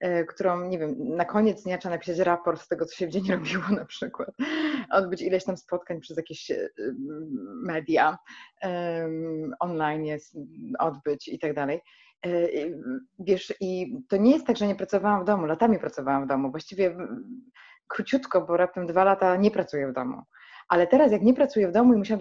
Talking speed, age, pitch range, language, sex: 175 wpm, 20-39, 170-230 Hz, Polish, female